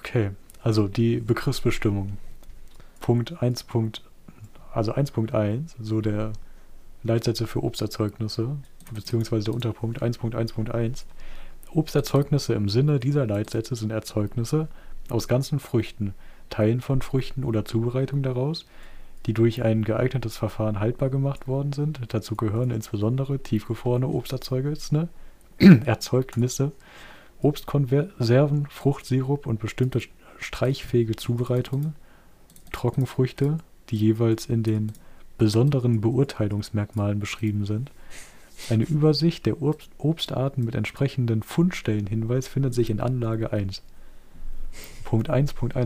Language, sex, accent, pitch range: German, male, German, 110-135 Hz